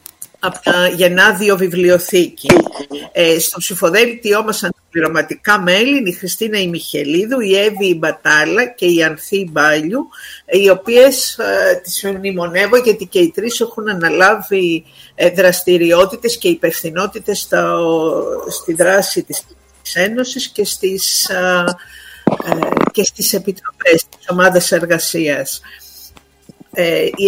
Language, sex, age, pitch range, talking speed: Greek, female, 50-69, 175-235 Hz, 130 wpm